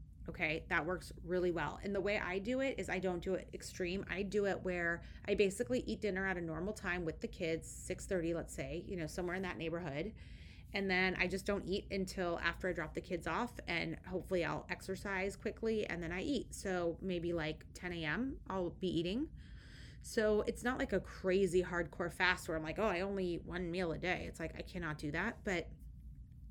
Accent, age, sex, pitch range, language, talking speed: American, 30-49, female, 170-200 Hz, English, 220 wpm